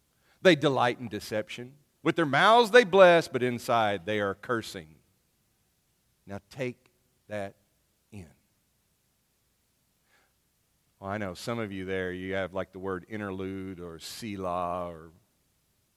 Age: 50-69